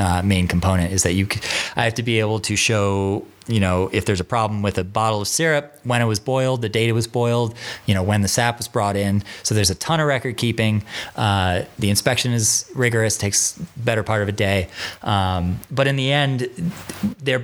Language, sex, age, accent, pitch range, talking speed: English, male, 30-49, American, 100-125 Hz, 225 wpm